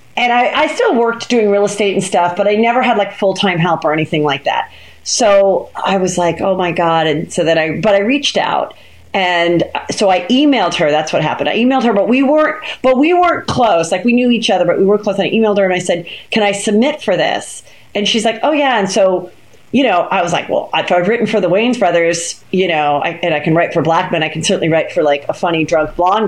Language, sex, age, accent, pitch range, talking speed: English, female, 40-59, American, 170-210 Hz, 260 wpm